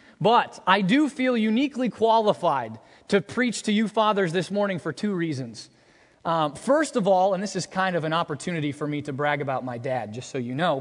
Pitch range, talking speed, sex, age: 155-215 Hz, 210 wpm, male, 20-39